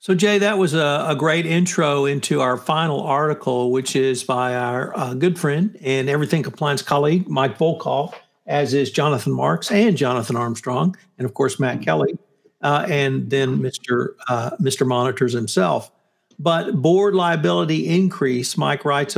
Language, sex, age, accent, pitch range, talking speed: English, male, 60-79, American, 130-155 Hz, 160 wpm